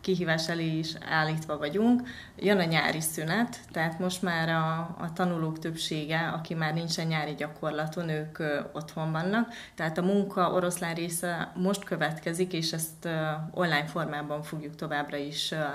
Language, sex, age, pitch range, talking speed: Hungarian, female, 20-39, 155-180 Hz, 155 wpm